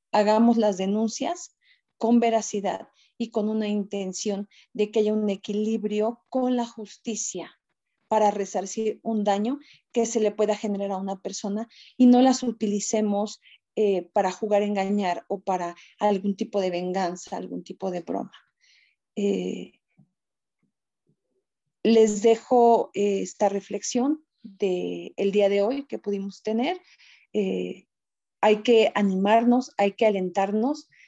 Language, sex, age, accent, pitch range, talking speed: Spanish, female, 40-59, Mexican, 200-235 Hz, 135 wpm